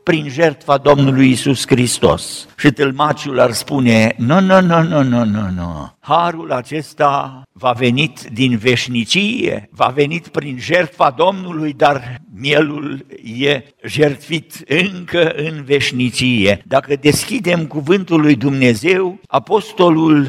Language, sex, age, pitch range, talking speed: Romanian, male, 60-79, 150-230 Hz, 135 wpm